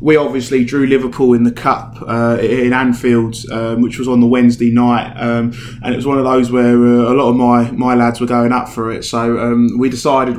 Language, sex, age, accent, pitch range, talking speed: English, male, 20-39, British, 120-145 Hz, 235 wpm